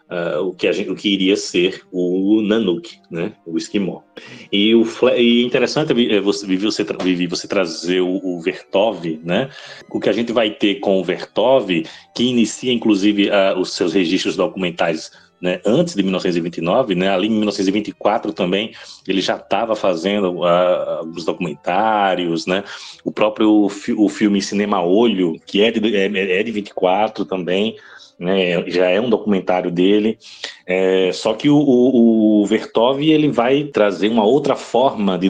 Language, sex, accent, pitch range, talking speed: Portuguese, male, Brazilian, 90-110 Hz, 165 wpm